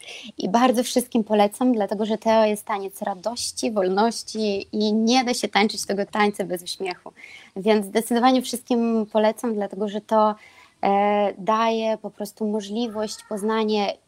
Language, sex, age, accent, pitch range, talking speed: English, female, 20-39, Polish, 200-230 Hz, 135 wpm